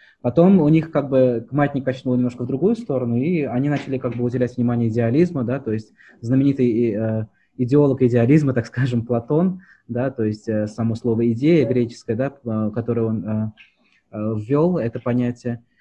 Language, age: Russian, 20-39